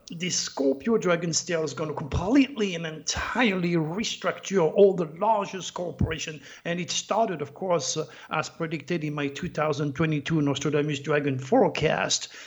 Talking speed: 140 wpm